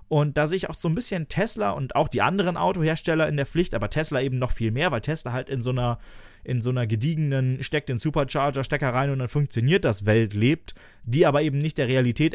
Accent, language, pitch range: German, German, 110-150 Hz